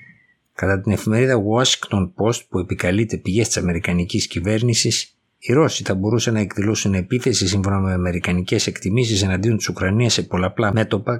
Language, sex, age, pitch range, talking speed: Greek, male, 60-79, 90-110 Hz, 150 wpm